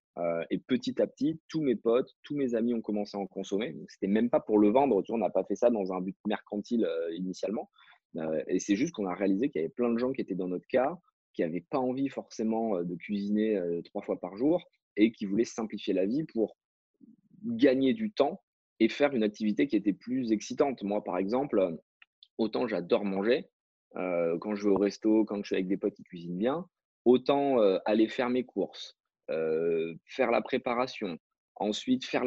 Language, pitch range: French, 100-125 Hz